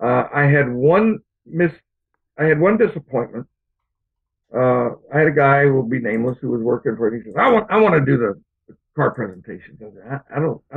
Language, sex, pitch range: English, male, 110-145 Hz